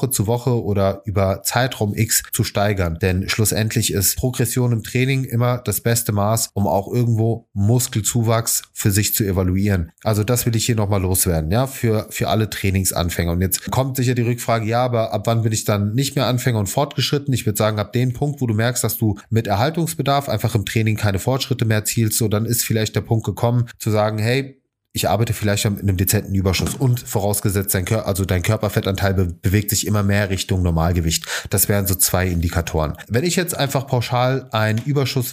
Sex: male